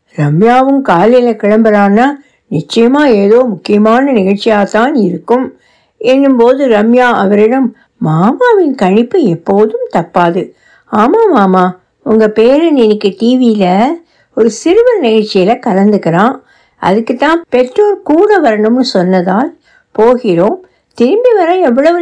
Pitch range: 190-275 Hz